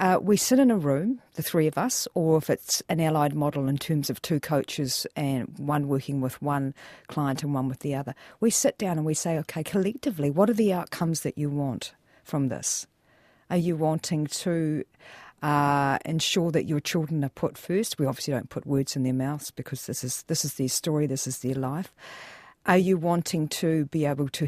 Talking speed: 210 wpm